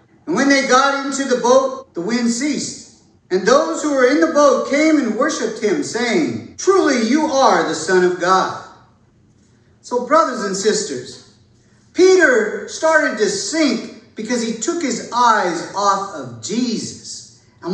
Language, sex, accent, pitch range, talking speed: English, male, American, 175-255 Hz, 155 wpm